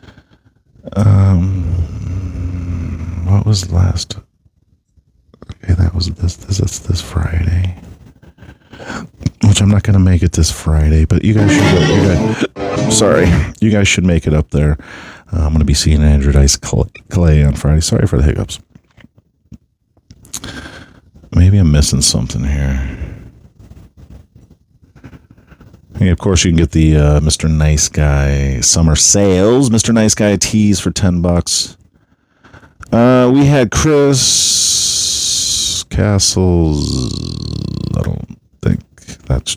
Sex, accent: male, American